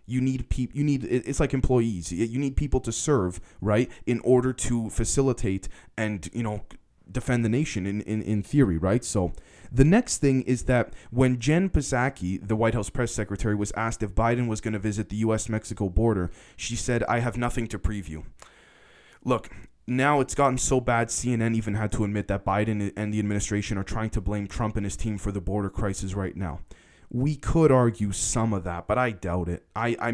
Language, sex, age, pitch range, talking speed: English, male, 20-39, 105-130 Hz, 205 wpm